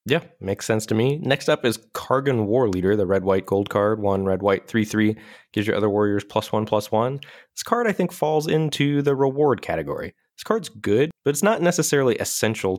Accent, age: American, 20-39